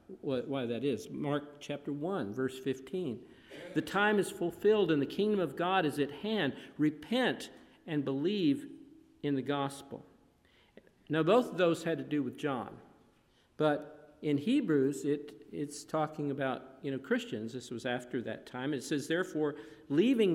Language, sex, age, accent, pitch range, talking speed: English, male, 50-69, American, 135-175 Hz, 160 wpm